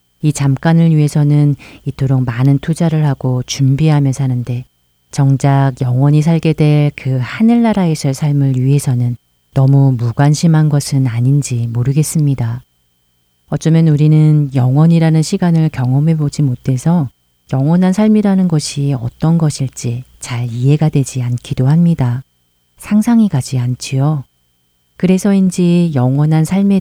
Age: 40-59